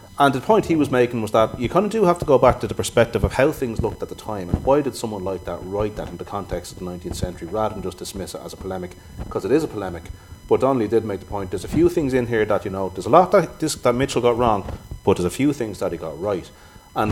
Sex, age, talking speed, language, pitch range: male, 30-49, 310 wpm, English, 90-110 Hz